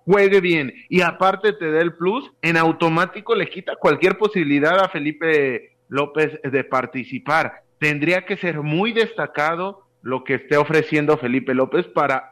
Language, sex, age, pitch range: Spanish, male, 30-49, 135-180 Hz